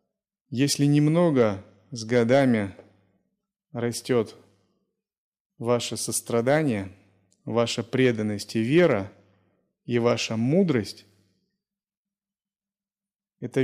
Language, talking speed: Russian, 65 wpm